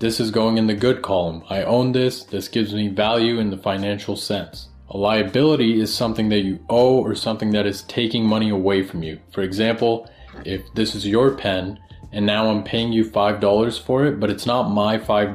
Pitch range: 100-110 Hz